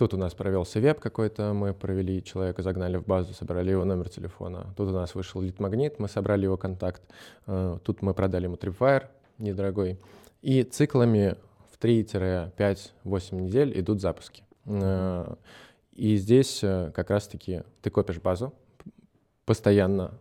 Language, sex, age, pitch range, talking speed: Russian, male, 20-39, 95-110 Hz, 140 wpm